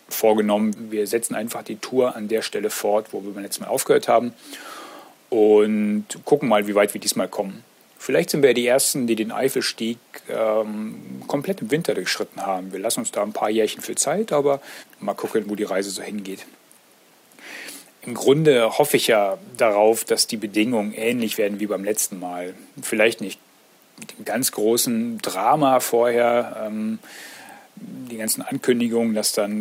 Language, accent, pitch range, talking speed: German, German, 105-145 Hz, 175 wpm